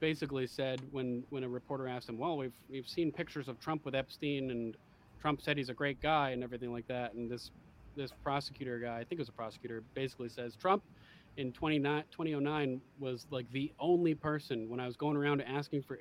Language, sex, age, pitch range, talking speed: English, male, 30-49, 120-145 Hz, 215 wpm